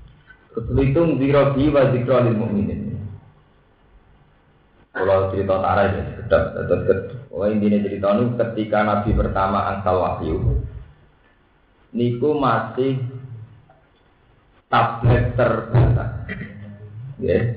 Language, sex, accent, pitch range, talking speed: Indonesian, male, native, 100-115 Hz, 80 wpm